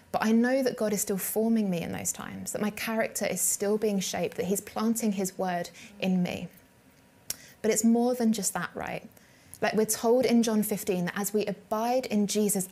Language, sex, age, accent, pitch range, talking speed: English, female, 20-39, British, 190-225 Hz, 210 wpm